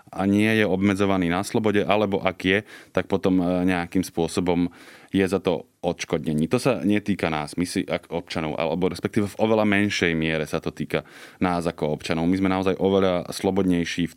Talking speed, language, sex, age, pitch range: 180 wpm, Slovak, male, 20-39, 85-100 Hz